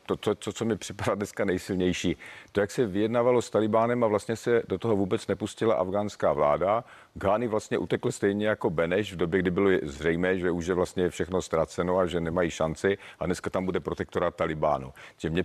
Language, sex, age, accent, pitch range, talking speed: Czech, male, 50-69, native, 90-115 Hz, 200 wpm